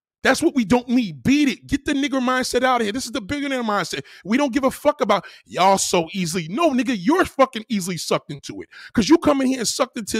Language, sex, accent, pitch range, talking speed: English, male, American, 190-260 Hz, 260 wpm